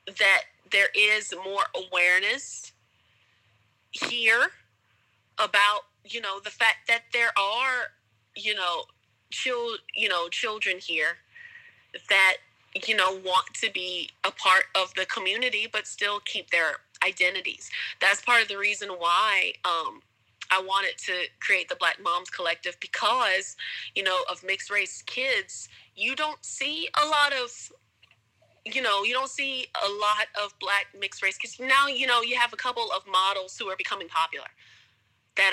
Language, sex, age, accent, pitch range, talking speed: English, female, 30-49, American, 185-230 Hz, 150 wpm